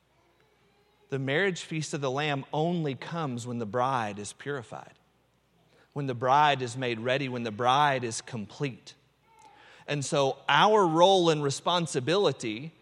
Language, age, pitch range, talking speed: English, 40-59, 125-165 Hz, 140 wpm